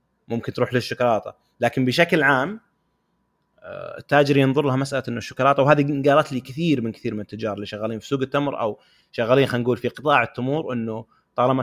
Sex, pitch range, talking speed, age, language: male, 105-135 Hz, 175 wpm, 30-49, Arabic